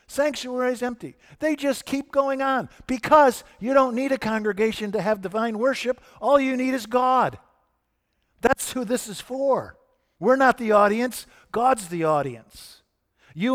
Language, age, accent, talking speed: English, 50-69, American, 160 wpm